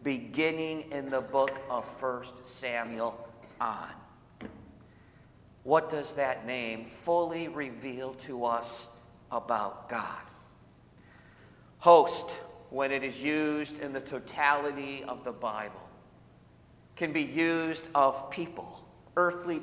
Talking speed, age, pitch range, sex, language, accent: 105 wpm, 50-69, 135-175 Hz, male, English, American